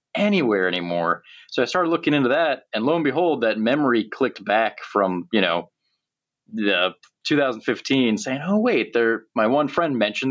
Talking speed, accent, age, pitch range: 170 wpm, American, 30-49, 105-160 Hz